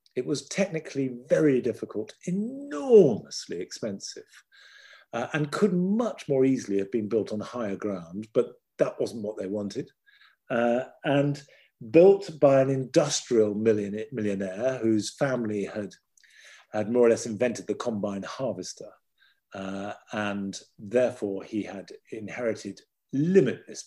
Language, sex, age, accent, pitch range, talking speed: English, male, 50-69, British, 105-145 Hz, 130 wpm